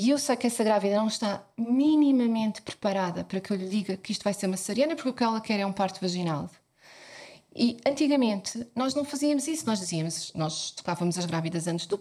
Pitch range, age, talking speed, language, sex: 180-260 Hz, 20-39, 215 wpm, English, female